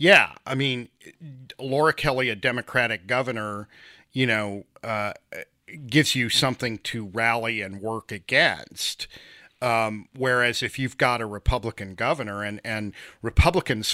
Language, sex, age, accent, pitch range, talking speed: English, male, 40-59, American, 105-125 Hz, 130 wpm